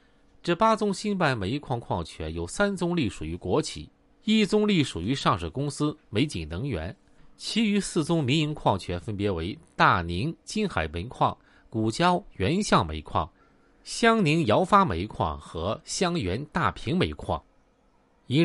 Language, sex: Chinese, male